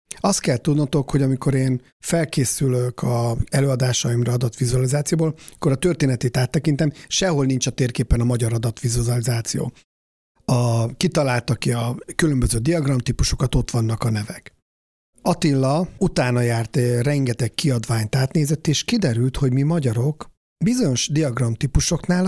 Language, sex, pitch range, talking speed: Hungarian, male, 120-155 Hz, 120 wpm